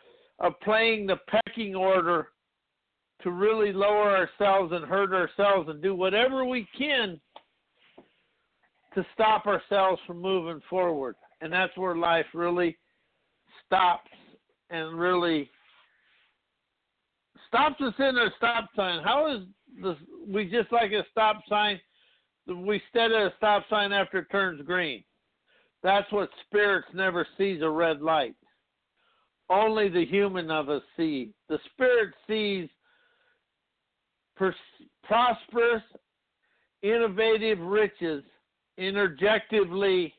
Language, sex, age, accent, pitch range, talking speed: English, male, 60-79, American, 185-225 Hz, 115 wpm